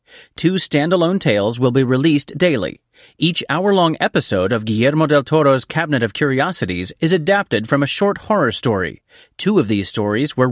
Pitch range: 120-185 Hz